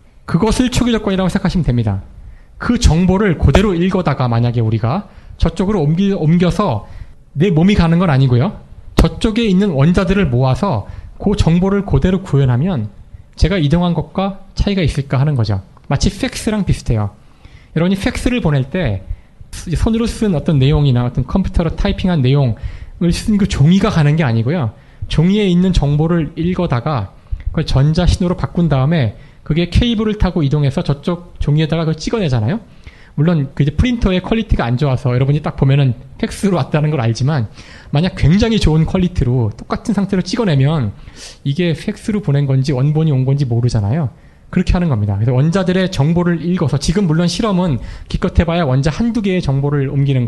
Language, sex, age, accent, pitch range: Korean, male, 20-39, native, 130-185 Hz